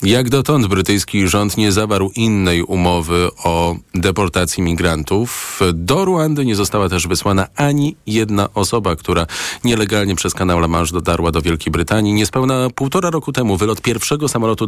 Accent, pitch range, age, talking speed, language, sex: native, 95-125 Hz, 40-59, 145 wpm, Polish, male